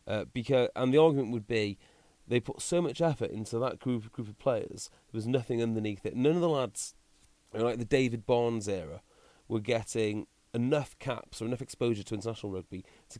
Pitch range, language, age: 110-145 Hz, English, 30-49